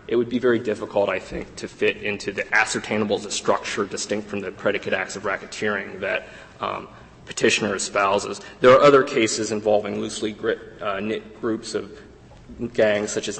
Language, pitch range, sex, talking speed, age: English, 105-120 Hz, male, 170 wpm, 30-49